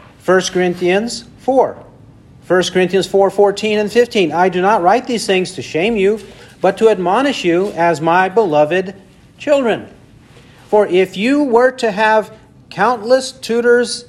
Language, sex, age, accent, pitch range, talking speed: English, male, 40-59, American, 160-225 Hz, 145 wpm